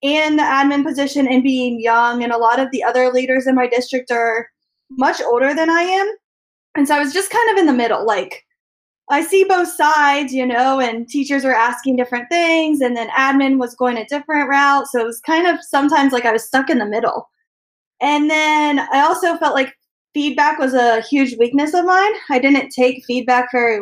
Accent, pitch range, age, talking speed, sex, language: American, 245-300 Hz, 20-39, 215 wpm, female, English